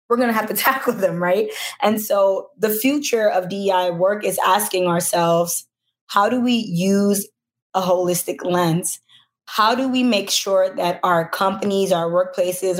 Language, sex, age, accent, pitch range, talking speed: English, female, 20-39, American, 180-210 Hz, 165 wpm